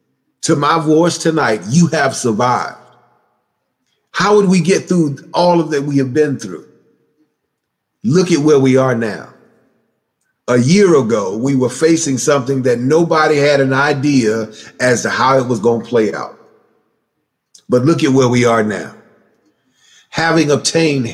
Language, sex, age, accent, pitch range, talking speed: English, male, 40-59, American, 125-165 Hz, 155 wpm